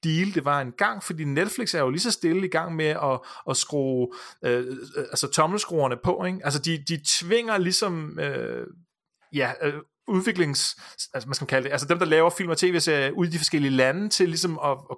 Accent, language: native, Danish